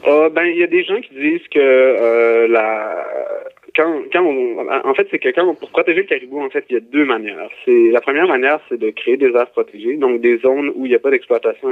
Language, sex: French, male